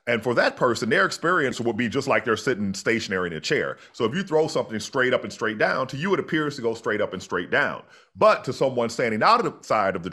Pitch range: 115-160 Hz